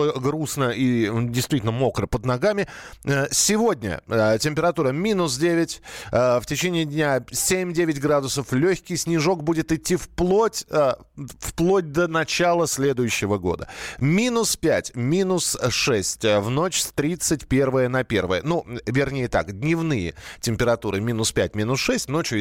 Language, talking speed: Russian, 120 wpm